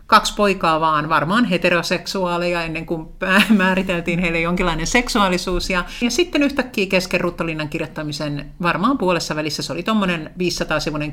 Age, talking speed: 50-69, 130 wpm